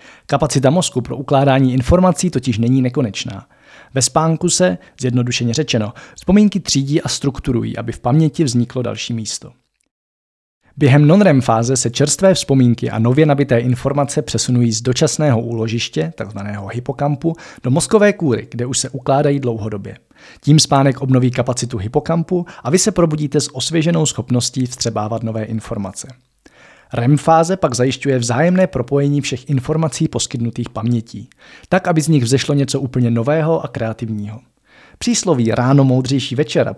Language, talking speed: Czech, 140 wpm